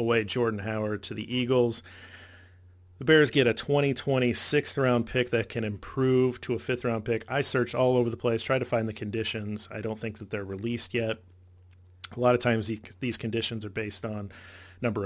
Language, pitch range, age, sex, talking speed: English, 105-120 Hz, 30-49, male, 200 wpm